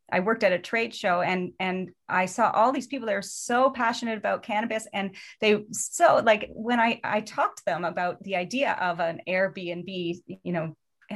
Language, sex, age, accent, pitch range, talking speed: English, female, 30-49, American, 185-235 Hz, 200 wpm